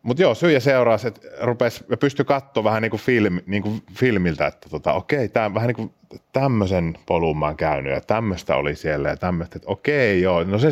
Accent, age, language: native, 30-49, Finnish